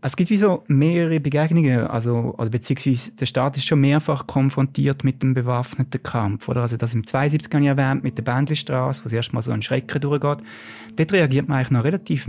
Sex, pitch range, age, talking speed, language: male, 120-150 Hz, 30-49, 205 wpm, German